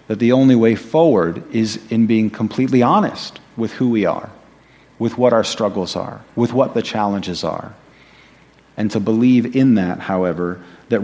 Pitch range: 100-125 Hz